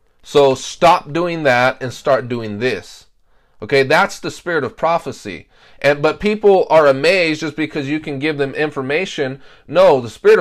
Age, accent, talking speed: 30-49, American, 165 wpm